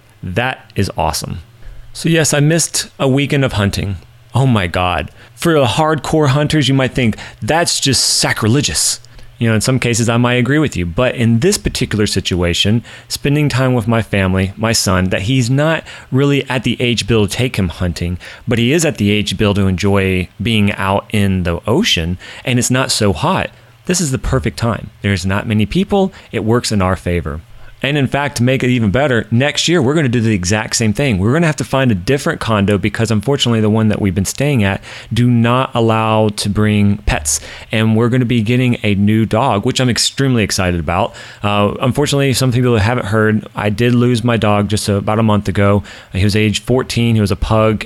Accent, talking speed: American, 210 wpm